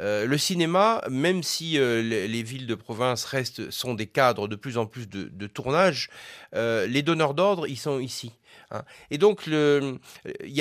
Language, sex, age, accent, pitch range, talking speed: French, male, 30-49, French, 120-165 Hz, 185 wpm